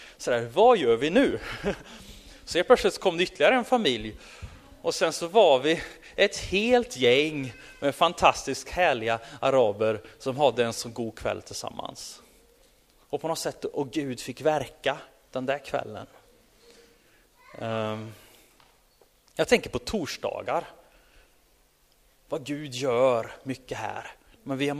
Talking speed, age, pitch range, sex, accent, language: 135 wpm, 30-49, 130-185 Hz, male, native, Swedish